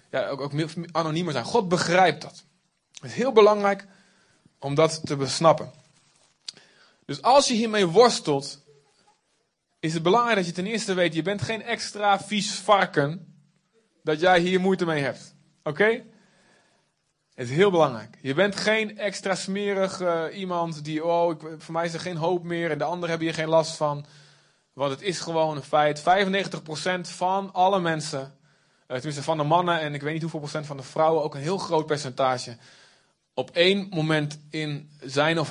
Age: 20-39